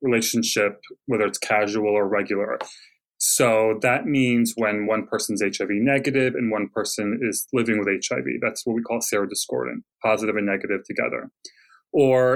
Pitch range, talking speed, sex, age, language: 105-125 Hz, 150 wpm, male, 20-39, English